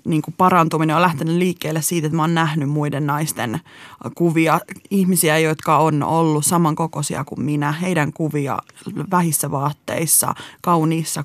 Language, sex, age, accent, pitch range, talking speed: Finnish, female, 20-39, native, 150-185 Hz, 130 wpm